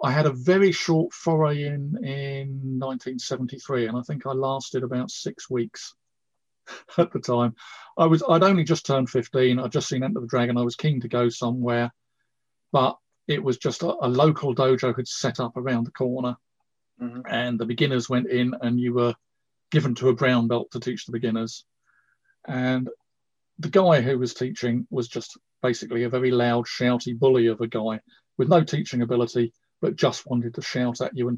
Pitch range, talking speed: 120-150 Hz, 190 wpm